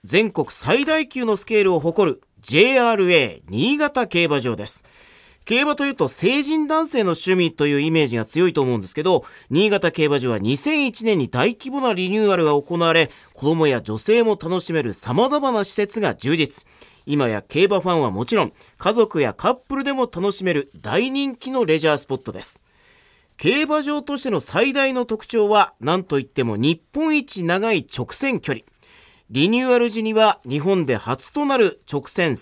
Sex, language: male, Japanese